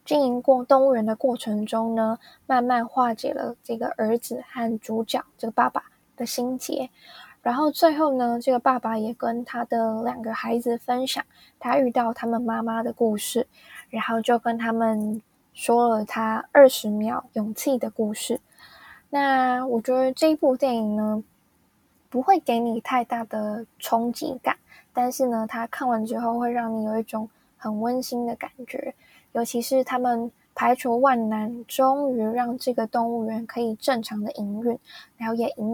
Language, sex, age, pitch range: Chinese, female, 10-29, 225-255 Hz